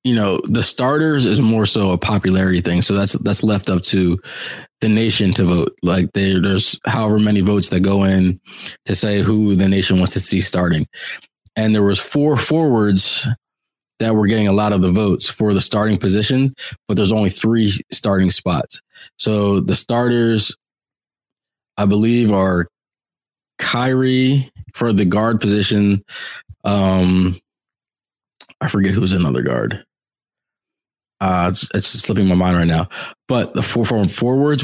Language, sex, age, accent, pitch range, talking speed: English, male, 20-39, American, 95-110 Hz, 155 wpm